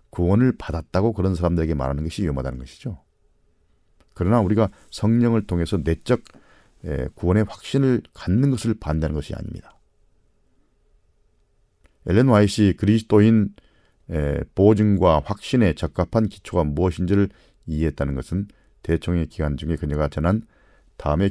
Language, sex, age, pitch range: Korean, male, 40-59, 80-100 Hz